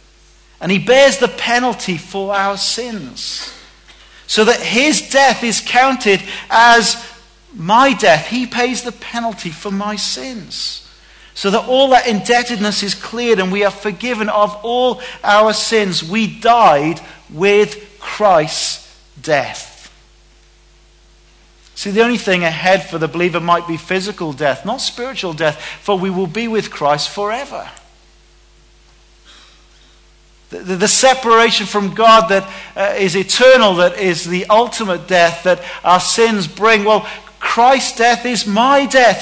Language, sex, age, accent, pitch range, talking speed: English, male, 40-59, British, 180-235 Hz, 135 wpm